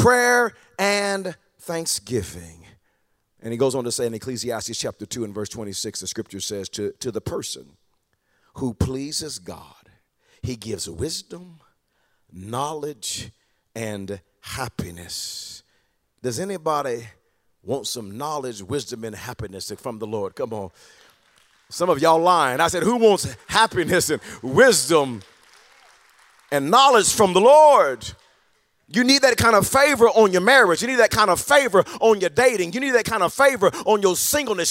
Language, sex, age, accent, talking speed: English, male, 40-59, American, 150 wpm